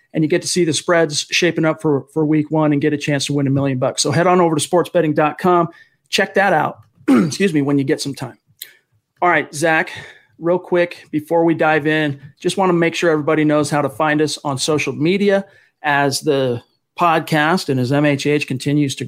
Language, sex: English, male